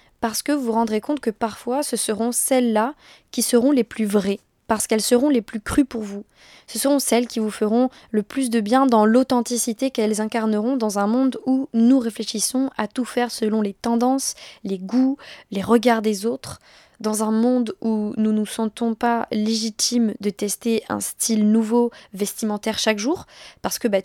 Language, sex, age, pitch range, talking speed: French, female, 20-39, 210-240 Hz, 190 wpm